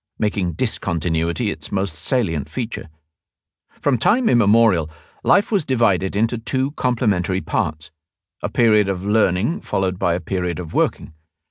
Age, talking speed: 50-69, 130 wpm